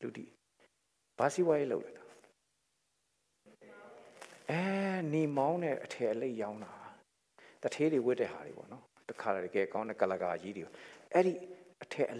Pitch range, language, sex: 155-250 Hz, English, male